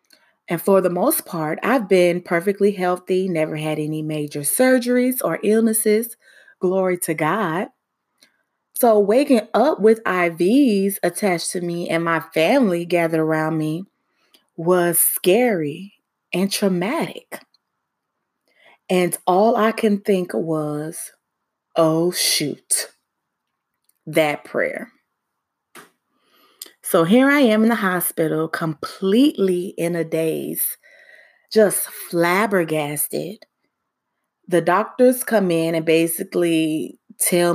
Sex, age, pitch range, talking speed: female, 20-39, 165-205 Hz, 105 wpm